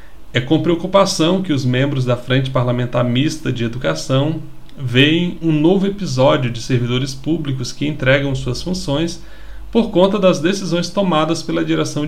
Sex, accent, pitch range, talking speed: male, Brazilian, 125-160 Hz, 150 wpm